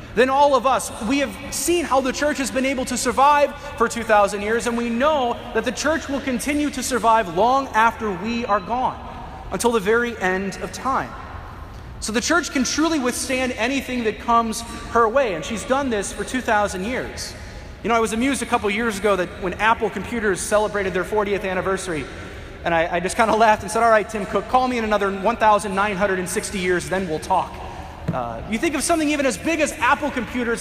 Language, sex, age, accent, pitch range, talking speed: English, male, 30-49, American, 200-260 Hz, 210 wpm